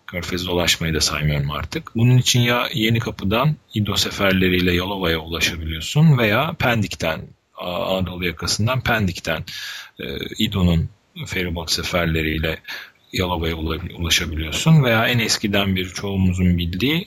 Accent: native